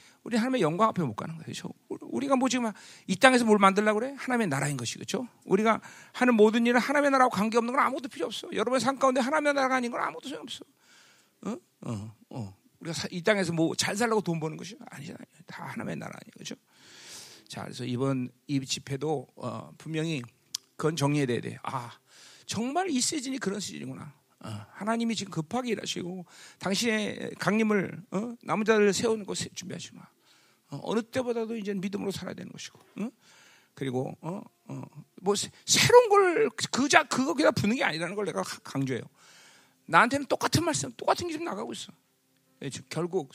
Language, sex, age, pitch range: Korean, male, 40-59, 155-250 Hz